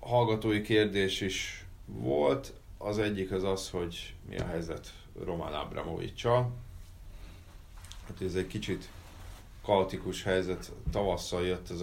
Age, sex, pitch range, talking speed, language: 30-49, male, 85-100 Hz, 115 wpm, Hungarian